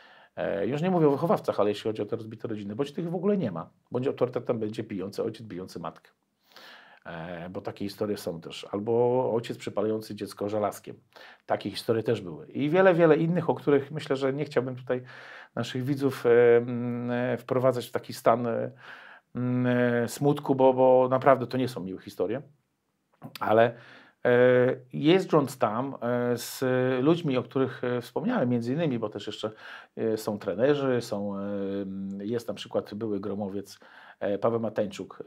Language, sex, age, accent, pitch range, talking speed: Polish, male, 40-59, native, 105-135 Hz, 150 wpm